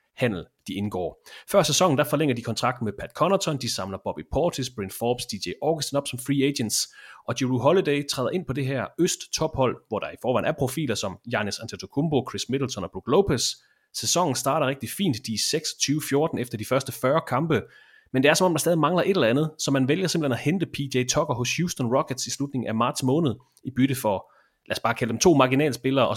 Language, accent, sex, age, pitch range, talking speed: English, Danish, male, 30-49, 120-150 Hz, 220 wpm